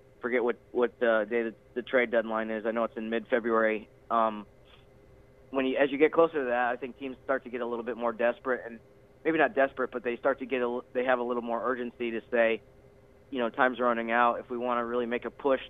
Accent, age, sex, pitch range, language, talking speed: American, 30-49, male, 110-125 Hz, English, 250 wpm